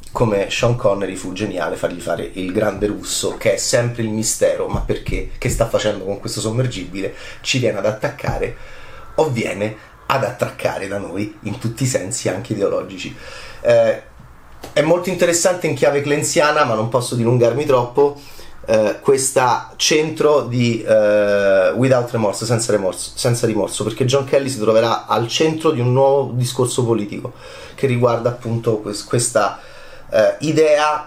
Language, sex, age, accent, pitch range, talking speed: Italian, male, 30-49, native, 110-145 Hz, 155 wpm